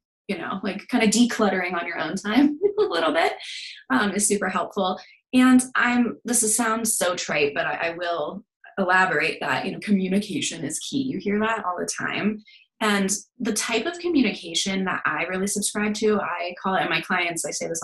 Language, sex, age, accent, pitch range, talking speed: English, female, 20-39, American, 180-220 Hz, 200 wpm